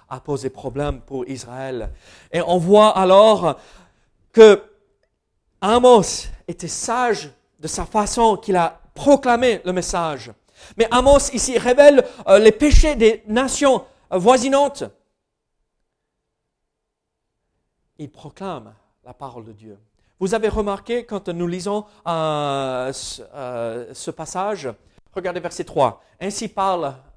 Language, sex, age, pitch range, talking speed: French, male, 40-59, 160-230 Hz, 115 wpm